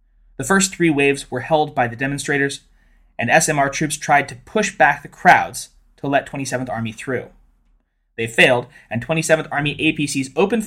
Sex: male